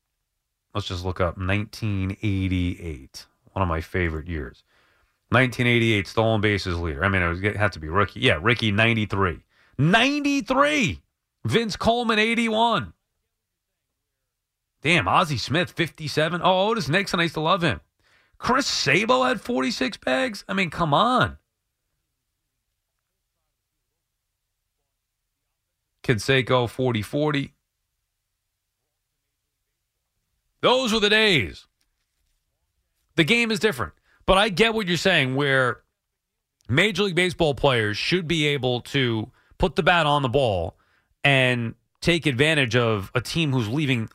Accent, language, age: American, English, 30-49